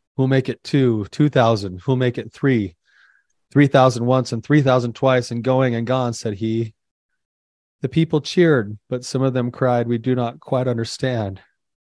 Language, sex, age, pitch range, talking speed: English, male, 30-49, 110-130 Hz, 175 wpm